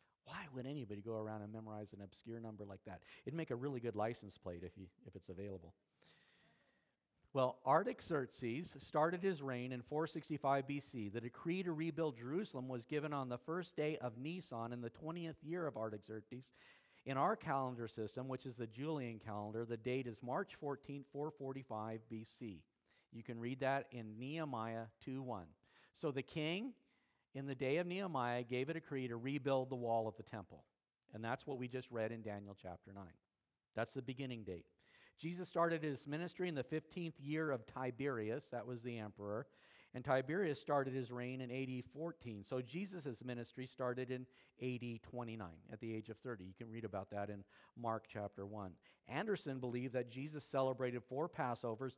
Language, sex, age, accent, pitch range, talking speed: English, male, 50-69, American, 110-145 Hz, 180 wpm